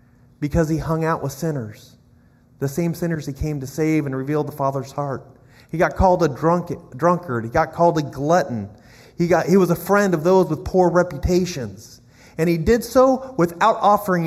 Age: 30-49